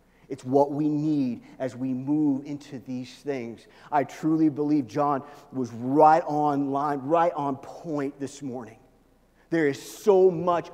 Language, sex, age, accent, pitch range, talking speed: English, male, 40-59, American, 130-160 Hz, 150 wpm